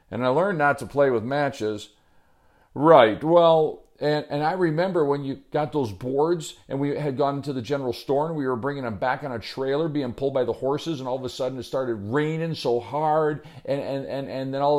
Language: English